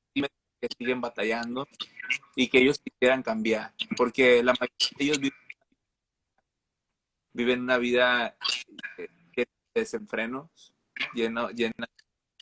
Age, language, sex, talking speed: 20-39, Spanish, male, 90 wpm